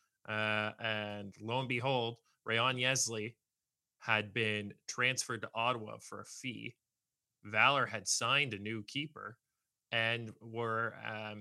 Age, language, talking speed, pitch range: 30-49, English, 120 wpm, 105-125 Hz